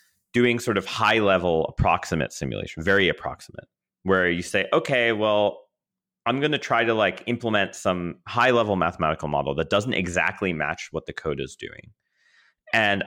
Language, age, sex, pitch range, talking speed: English, 30-49, male, 80-105 Hz, 155 wpm